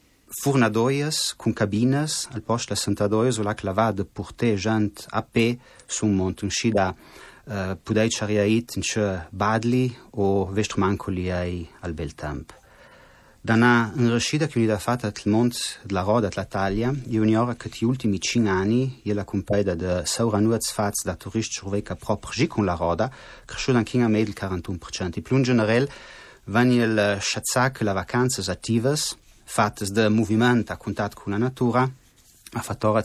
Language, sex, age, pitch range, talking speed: Italian, male, 30-49, 100-120 Hz, 145 wpm